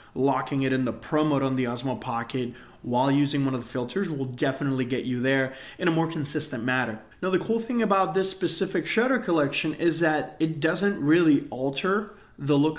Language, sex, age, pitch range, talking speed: English, male, 20-39, 130-160 Hz, 200 wpm